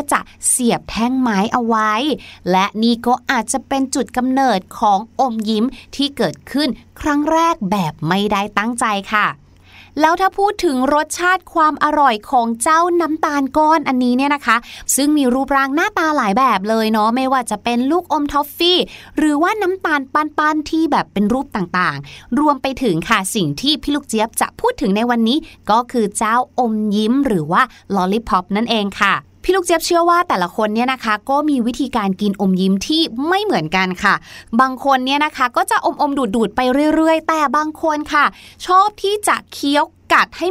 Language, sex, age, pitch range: Thai, female, 20-39, 215-300 Hz